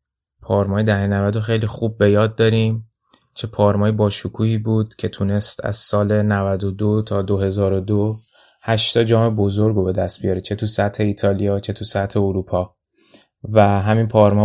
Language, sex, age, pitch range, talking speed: Persian, male, 20-39, 100-110 Hz, 160 wpm